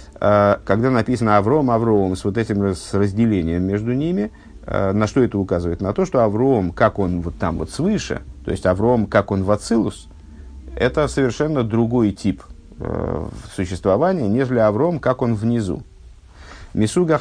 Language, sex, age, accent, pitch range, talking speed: Russian, male, 50-69, native, 90-125 Hz, 145 wpm